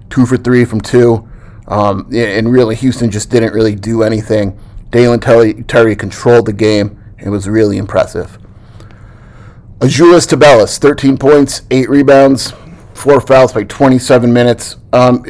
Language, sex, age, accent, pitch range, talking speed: English, male, 30-49, American, 105-120 Hz, 135 wpm